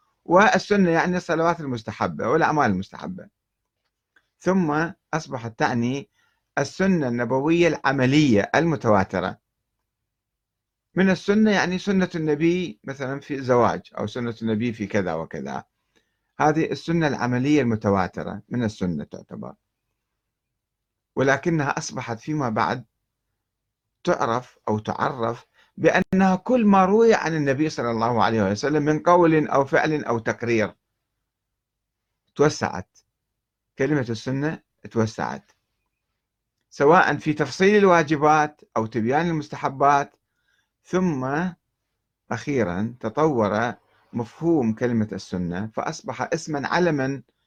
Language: Arabic